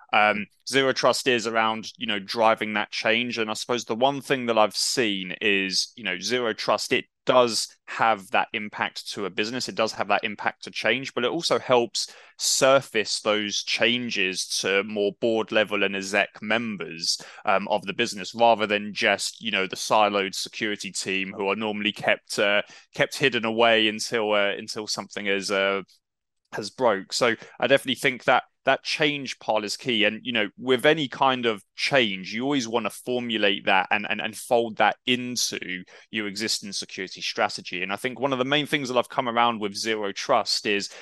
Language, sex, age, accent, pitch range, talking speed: English, male, 20-39, British, 100-120 Hz, 195 wpm